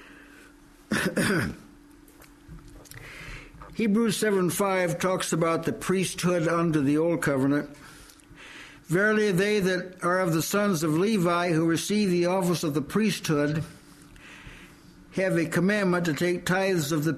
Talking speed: 120 wpm